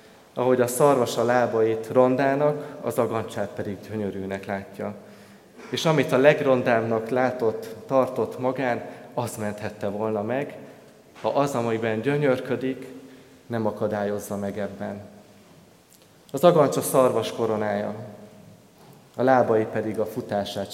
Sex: male